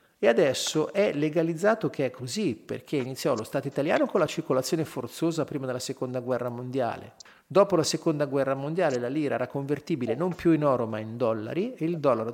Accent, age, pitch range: native, 40-59, 130-170 Hz